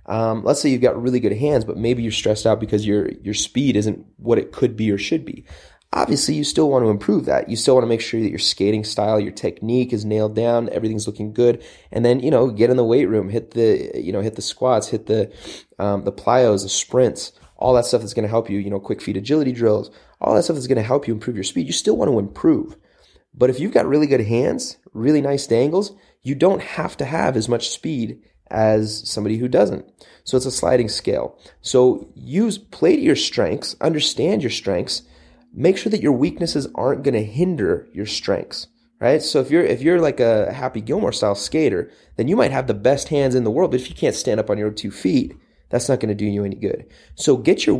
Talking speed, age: 240 wpm, 20-39